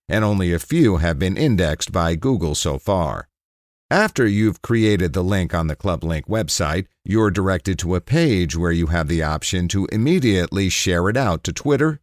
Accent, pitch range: American, 85-110 Hz